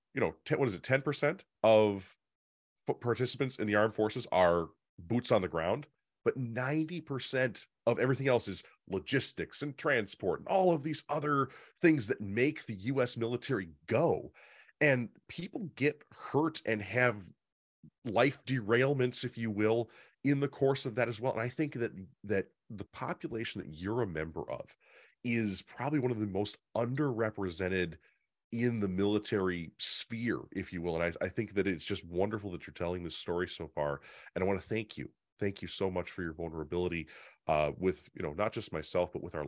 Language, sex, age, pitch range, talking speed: English, male, 30-49, 90-125 Hz, 185 wpm